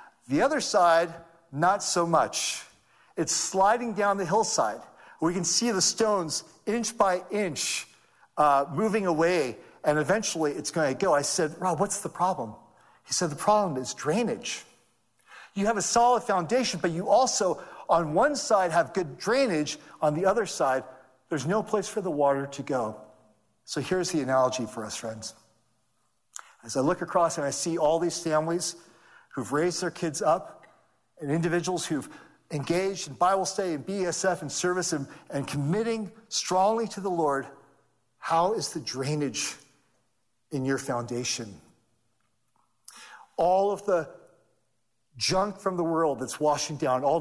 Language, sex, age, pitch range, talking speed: English, male, 50-69, 145-210 Hz, 160 wpm